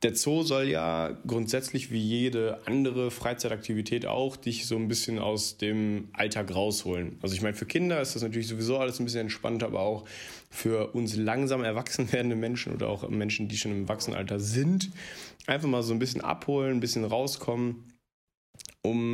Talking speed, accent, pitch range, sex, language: 180 wpm, German, 110-130 Hz, male, German